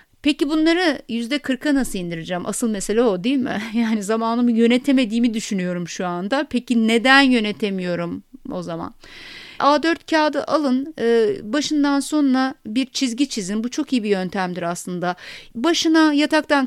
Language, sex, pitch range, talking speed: Turkish, female, 220-285 Hz, 135 wpm